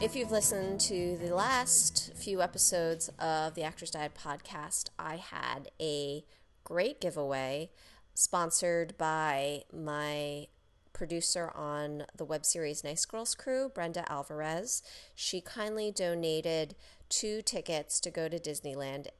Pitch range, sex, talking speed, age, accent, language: 145-180 Hz, female, 125 wpm, 30-49, American, English